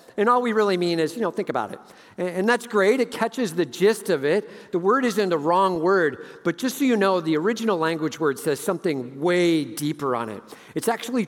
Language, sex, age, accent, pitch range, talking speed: English, male, 50-69, American, 175-220 Hz, 230 wpm